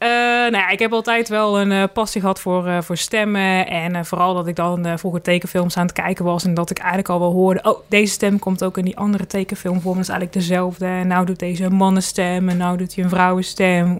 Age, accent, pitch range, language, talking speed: 20-39, Dutch, 180-205 Hz, Dutch, 255 wpm